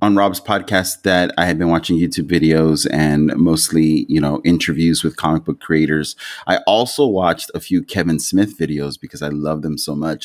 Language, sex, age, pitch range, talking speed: English, male, 30-49, 75-100 Hz, 195 wpm